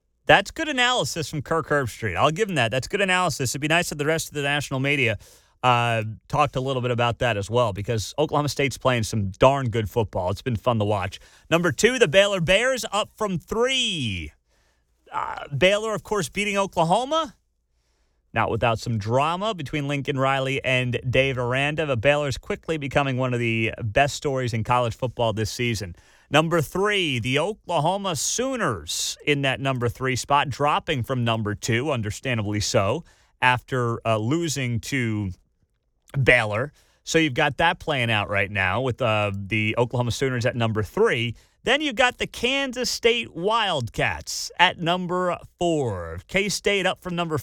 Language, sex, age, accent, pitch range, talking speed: English, male, 30-49, American, 115-170 Hz, 170 wpm